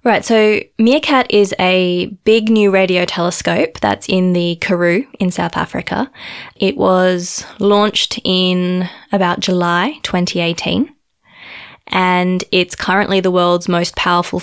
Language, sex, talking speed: English, female, 125 wpm